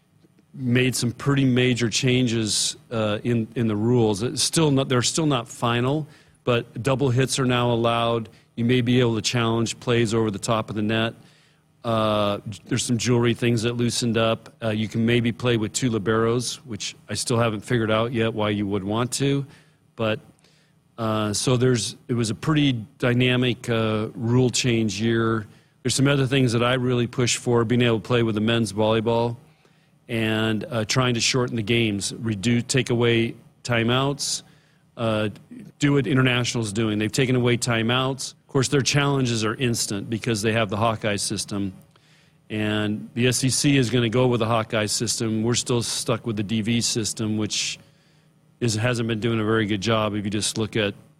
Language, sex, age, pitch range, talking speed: English, male, 40-59, 110-135 Hz, 185 wpm